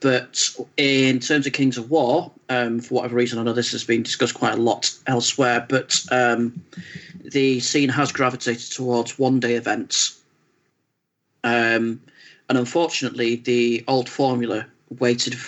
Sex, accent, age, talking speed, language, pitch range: male, British, 40-59, 145 wpm, English, 120-130 Hz